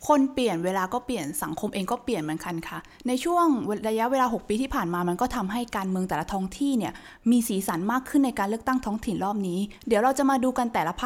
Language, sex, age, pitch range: Thai, female, 20-39, 195-255 Hz